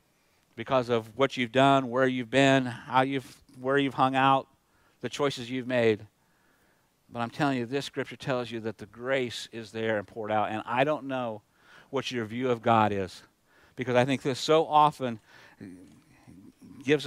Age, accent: 50-69, American